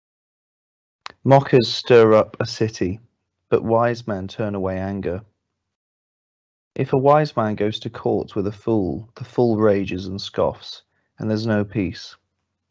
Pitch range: 95-115 Hz